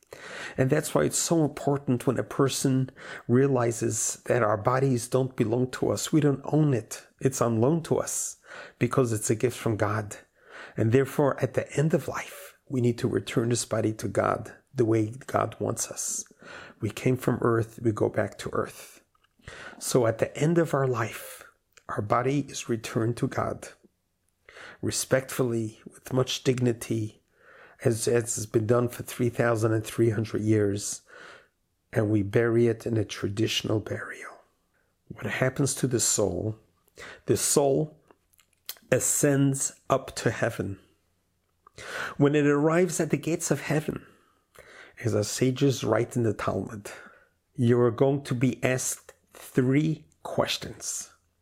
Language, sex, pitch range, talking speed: English, male, 110-140 Hz, 150 wpm